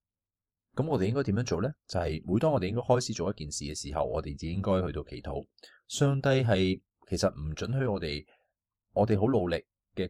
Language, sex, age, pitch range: Chinese, male, 20-39, 80-110 Hz